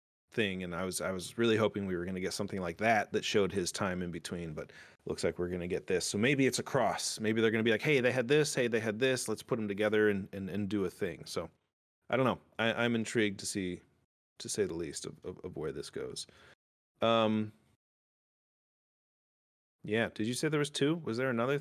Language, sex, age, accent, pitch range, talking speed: English, male, 30-49, American, 90-115 Hz, 240 wpm